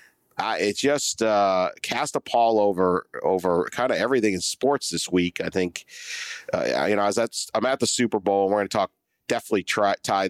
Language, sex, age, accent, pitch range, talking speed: English, male, 40-59, American, 95-115 Hz, 210 wpm